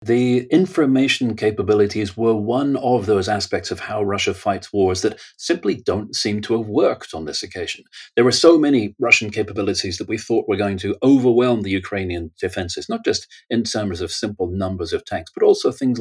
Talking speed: 190 wpm